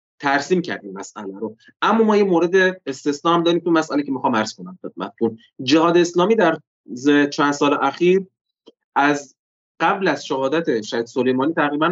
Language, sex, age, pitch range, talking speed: Persian, male, 30-49, 130-170 Hz, 150 wpm